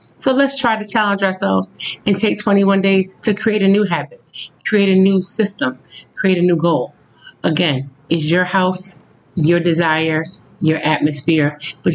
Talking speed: 160 wpm